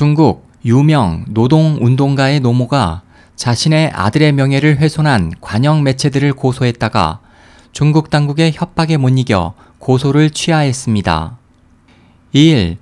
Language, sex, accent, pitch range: Korean, male, native, 120-155 Hz